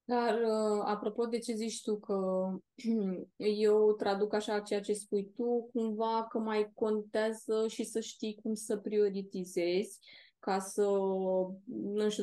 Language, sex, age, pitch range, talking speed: Romanian, female, 20-39, 200-230 Hz, 135 wpm